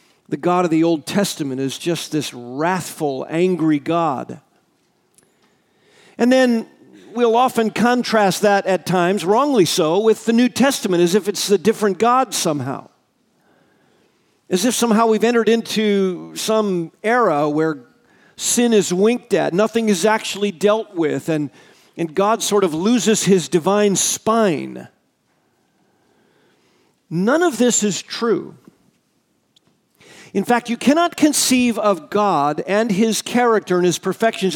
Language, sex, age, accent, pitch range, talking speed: English, male, 50-69, American, 185-240 Hz, 135 wpm